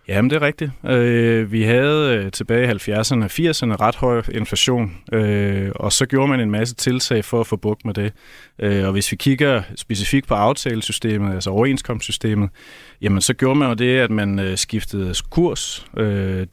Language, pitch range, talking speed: Danish, 105-125 Hz, 190 wpm